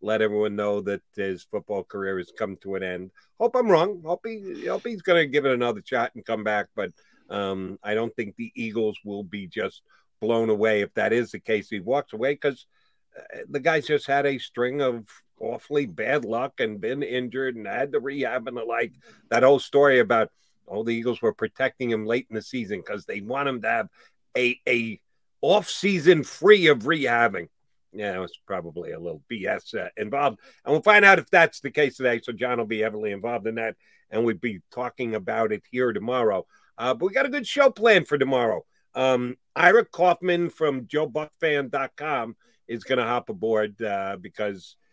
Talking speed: 205 wpm